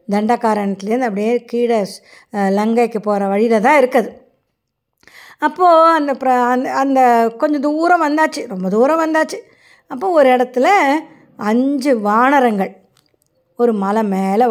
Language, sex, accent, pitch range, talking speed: Tamil, female, native, 220-285 Hz, 110 wpm